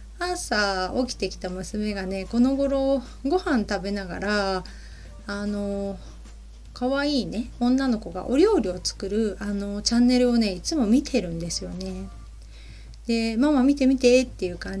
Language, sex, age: Japanese, female, 30-49